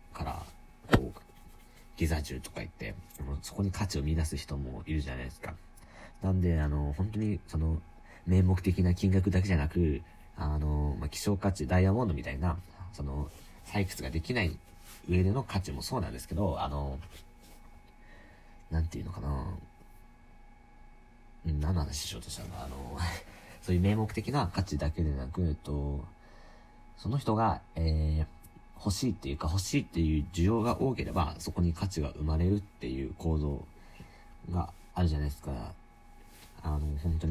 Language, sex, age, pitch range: Japanese, male, 40-59, 75-95 Hz